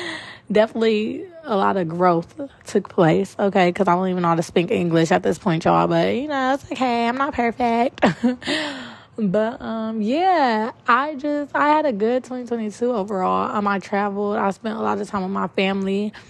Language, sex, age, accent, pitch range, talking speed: English, female, 20-39, American, 180-210 Hz, 190 wpm